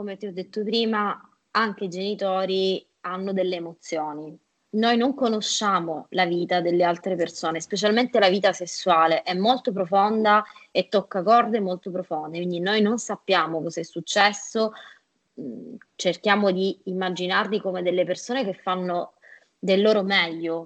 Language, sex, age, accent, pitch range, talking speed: Italian, female, 20-39, native, 175-200 Hz, 140 wpm